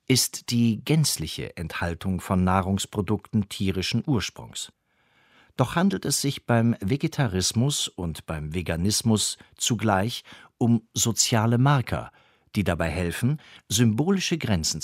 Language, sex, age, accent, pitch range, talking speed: German, male, 50-69, German, 95-130 Hz, 105 wpm